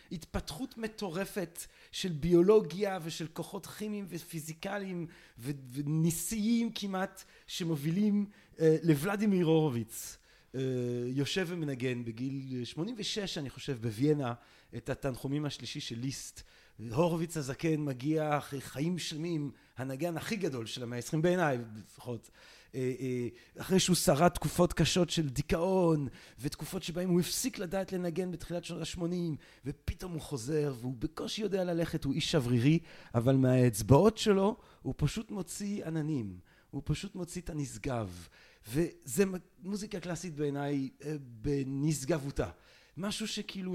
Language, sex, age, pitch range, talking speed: Hebrew, male, 30-49, 135-180 Hz, 115 wpm